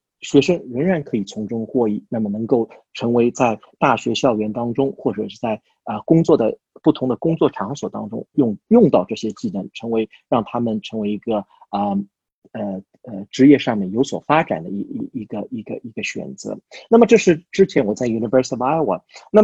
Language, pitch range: Chinese, 115-165 Hz